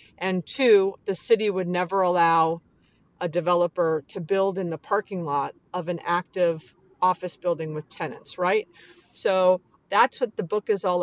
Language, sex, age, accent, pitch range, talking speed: English, female, 40-59, American, 180-225 Hz, 165 wpm